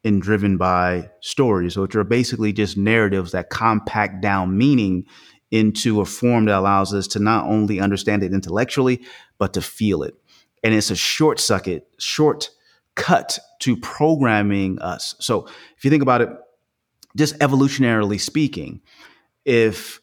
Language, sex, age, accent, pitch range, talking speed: English, male, 30-49, American, 100-120 Hz, 145 wpm